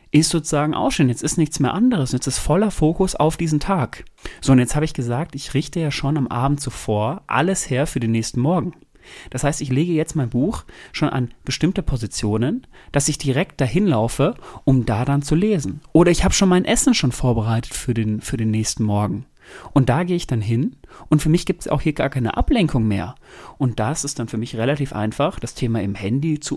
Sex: male